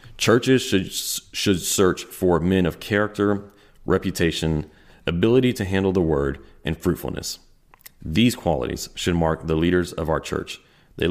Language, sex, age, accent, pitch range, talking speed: English, male, 30-49, American, 80-100 Hz, 140 wpm